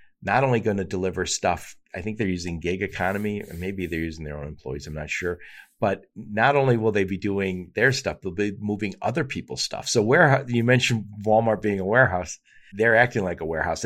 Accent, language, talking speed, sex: American, English, 215 wpm, male